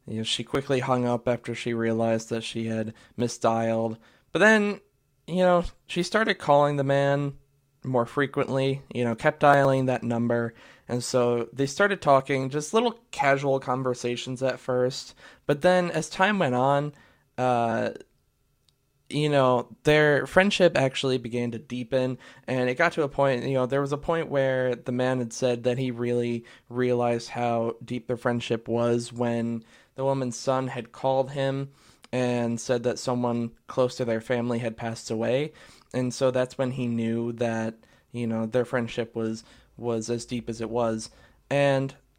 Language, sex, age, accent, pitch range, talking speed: English, male, 20-39, American, 120-140 Hz, 170 wpm